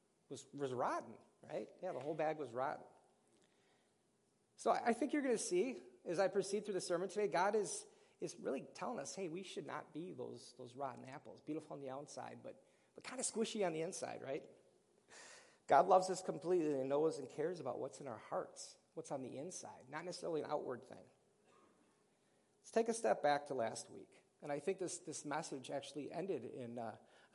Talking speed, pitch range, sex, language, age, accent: 205 wpm, 145-215 Hz, male, English, 40-59, American